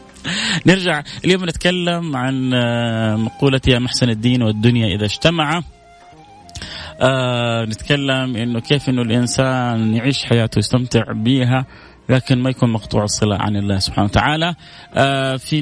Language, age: Arabic, 30-49